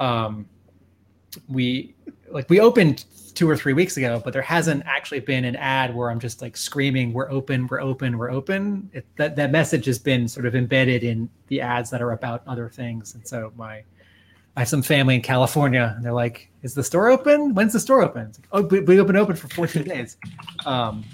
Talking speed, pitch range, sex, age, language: 215 wpm, 120-155 Hz, male, 30-49, English